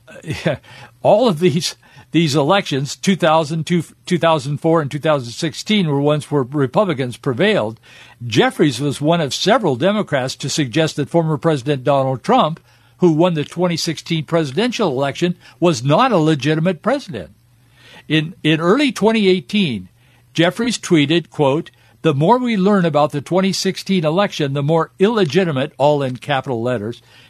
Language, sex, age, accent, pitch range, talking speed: English, male, 60-79, American, 140-180 Hz, 140 wpm